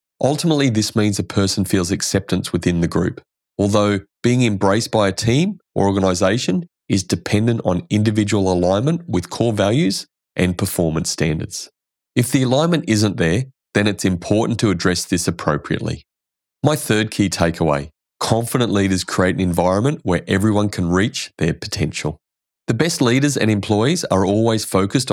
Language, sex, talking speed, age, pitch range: English, male, 155 wpm, 30-49, 90-115 Hz